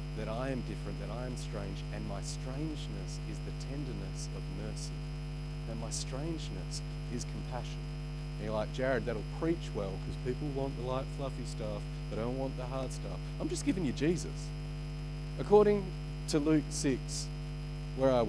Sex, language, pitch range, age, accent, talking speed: male, English, 135-150 Hz, 40-59, Australian, 170 wpm